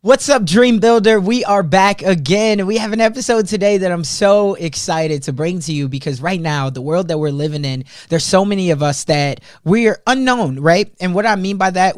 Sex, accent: male, American